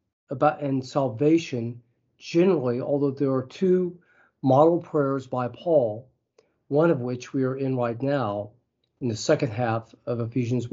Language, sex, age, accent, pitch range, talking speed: English, male, 40-59, American, 120-155 Hz, 145 wpm